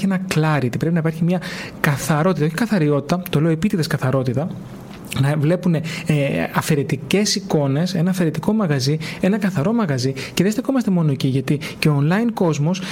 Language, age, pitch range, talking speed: Greek, 30-49, 145-180 Hz, 160 wpm